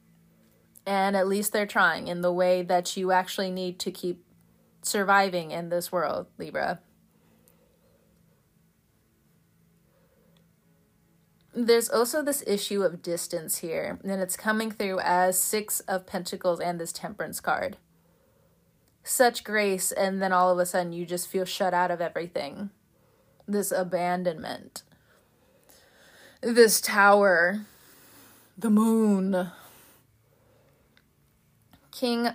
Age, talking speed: 20-39, 110 wpm